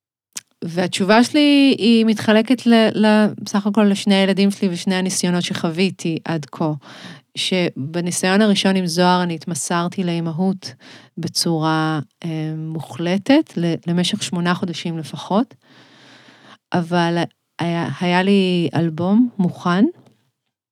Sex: female